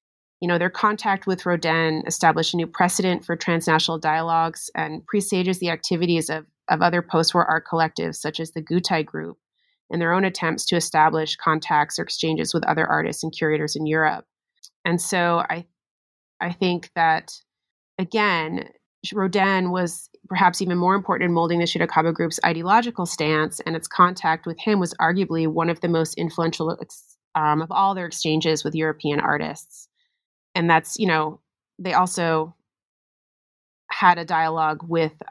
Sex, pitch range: female, 160-180 Hz